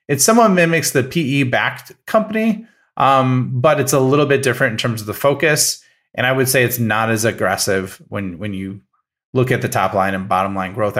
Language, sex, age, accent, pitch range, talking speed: English, male, 30-49, American, 115-145 Hz, 205 wpm